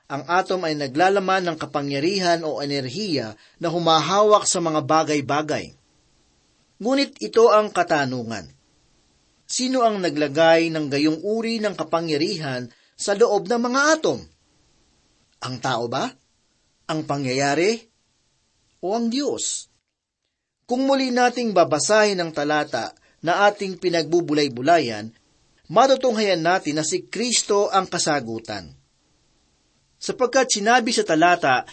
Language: Filipino